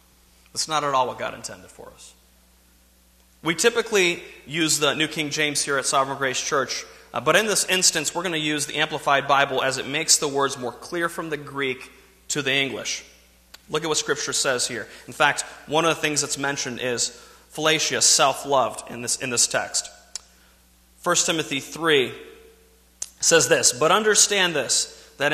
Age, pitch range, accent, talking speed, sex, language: 30-49, 135-180 Hz, American, 175 wpm, male, English